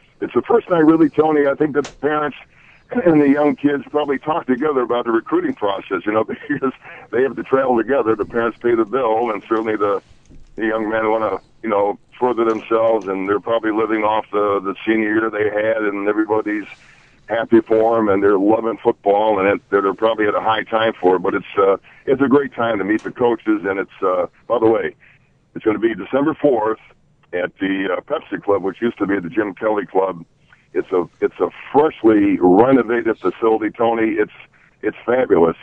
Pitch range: 105-140 Hz